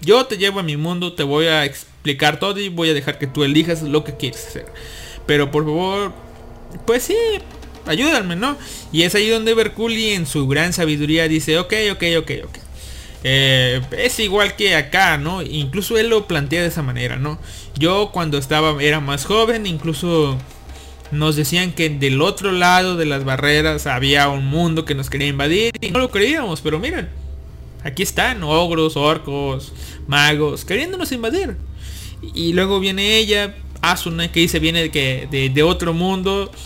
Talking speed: 175 wpm